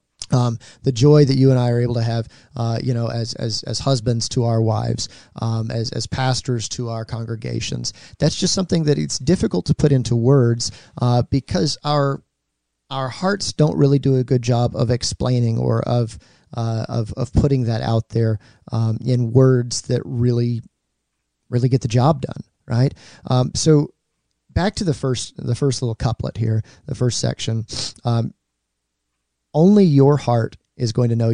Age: 40-59